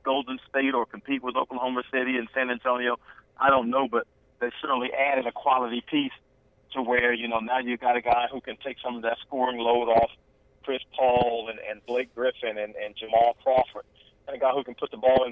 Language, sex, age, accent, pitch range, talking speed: English, male, 40-59, American, 120-130 Hz, 225 wpm